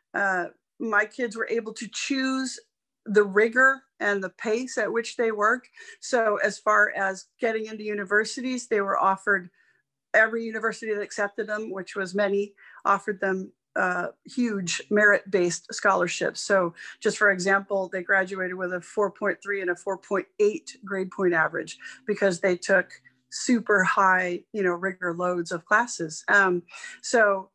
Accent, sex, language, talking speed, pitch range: American, female, English, 150 wpm, 185-220 Hz